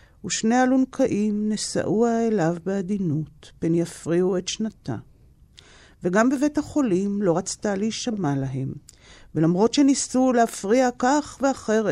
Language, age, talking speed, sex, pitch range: Hebrew, 50-69, 105 wpm, female, 165-225 Hz